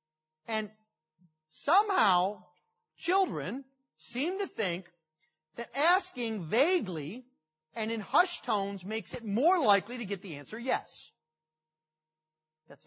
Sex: male